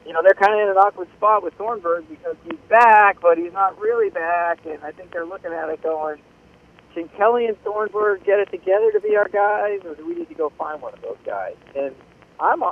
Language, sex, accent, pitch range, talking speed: English, male, American, 150-215 Hz, 240 wpm